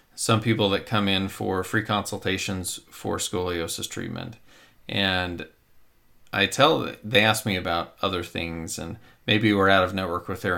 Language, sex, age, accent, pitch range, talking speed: English, male, 40-59, American, 90-110 Hz, 160 wpm